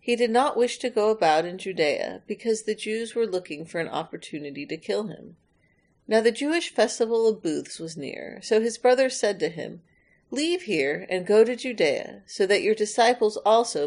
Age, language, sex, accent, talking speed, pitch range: 40-59, English, female, American, 195 wpm, 180-255 Hz